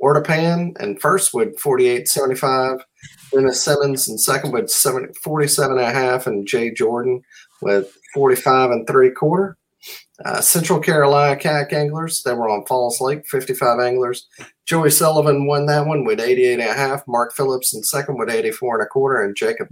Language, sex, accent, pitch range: English, male, American, 125-200 Hz